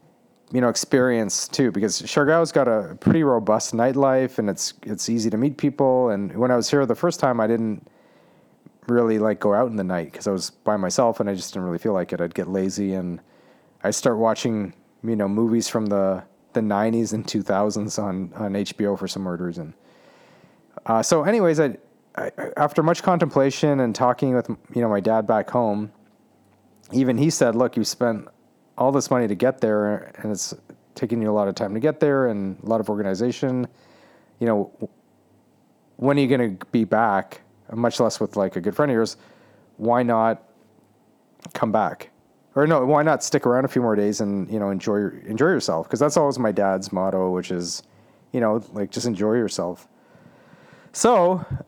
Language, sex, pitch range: English, male, 100-130 Hz